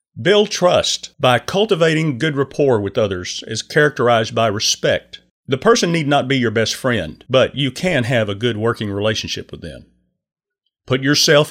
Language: English